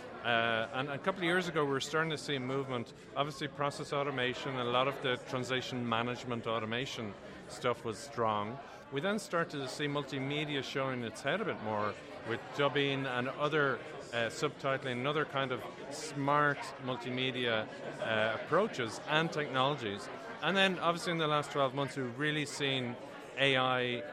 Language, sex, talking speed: English, male, 160 wpm